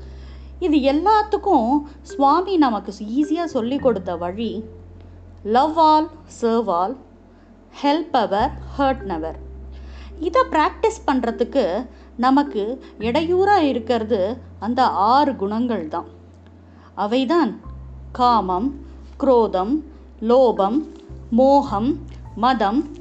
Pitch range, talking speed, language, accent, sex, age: 180-295 Hz, 85 wpm, Tamil, native, female, 20-39